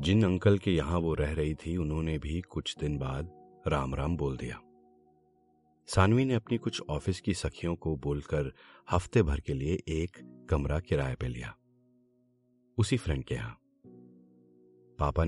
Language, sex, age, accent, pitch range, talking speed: Hindi, male, 40-59, native, 75-105 Hz, 155 wpm